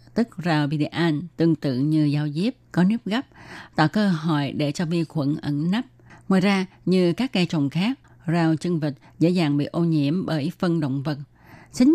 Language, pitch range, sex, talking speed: Vietnamese, 150-190 Hz, female, 200 wpm